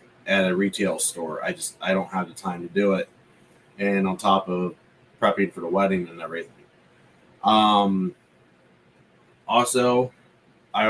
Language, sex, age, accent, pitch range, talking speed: English, male, 30-49, American, 95-110 Hz, 150 wpm